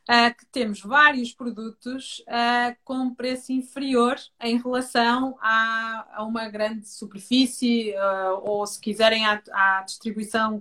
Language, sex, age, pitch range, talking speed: Portuguese, female, 20-39, 220-260 Hz, 110 wpm